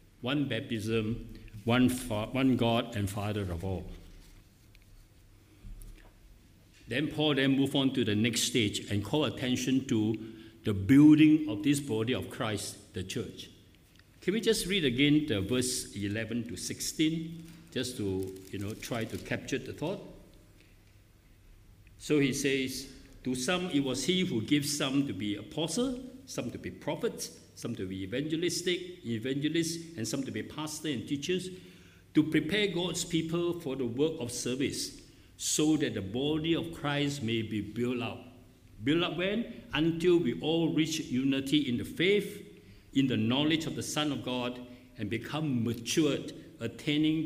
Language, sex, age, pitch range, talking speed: English, male, 60-79, 105-150 Hz, 155 wpm